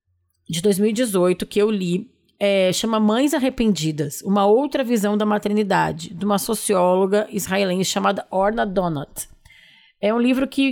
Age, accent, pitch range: 20-39, Brazilian, 185-225 Hz